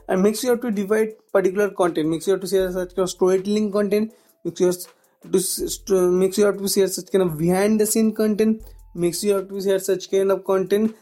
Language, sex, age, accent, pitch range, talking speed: English, male, 20-39, Indian, 185-215 Hz, 210 wpm